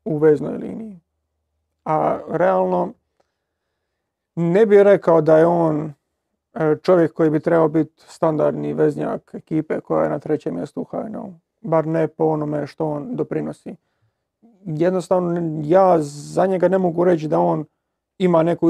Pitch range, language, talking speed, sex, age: 150-175 Hz, Croatian, 140 wpm, male, 40-59